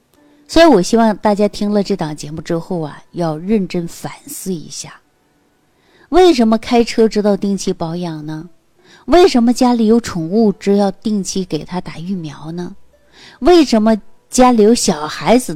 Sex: female